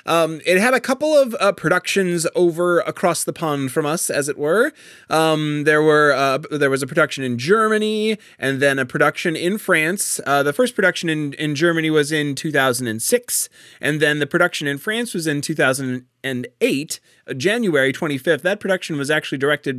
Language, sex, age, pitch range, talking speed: English, male, 30-49, 135-175 Hz, 180 wpm